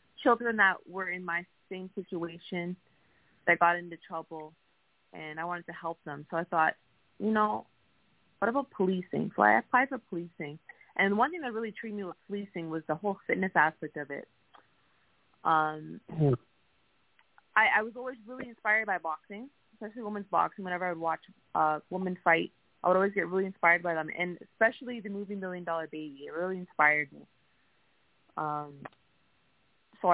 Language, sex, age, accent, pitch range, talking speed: English, female, 30-49, American, 155-195 Hz, 170 wpm